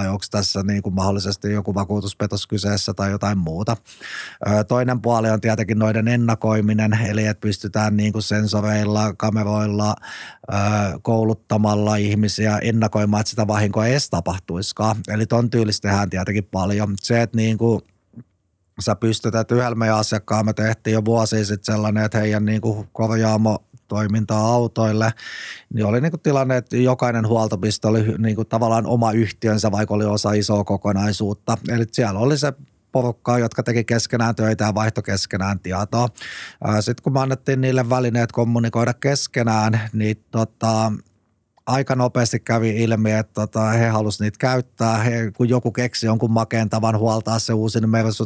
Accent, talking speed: native, 140 wpm